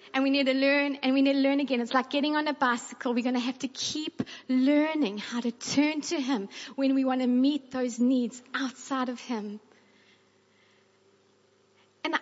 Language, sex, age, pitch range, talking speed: English, female, 30-49, 260-335 Hz, 195 wpm